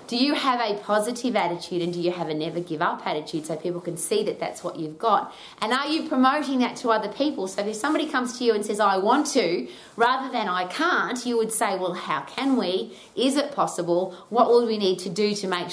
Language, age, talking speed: English, 30-49, 250 wpm